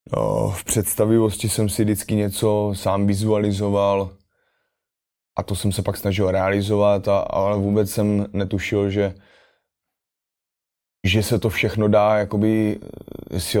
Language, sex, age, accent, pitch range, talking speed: Czech, male, 20-39, native, 95-105 Hz, 130 wpm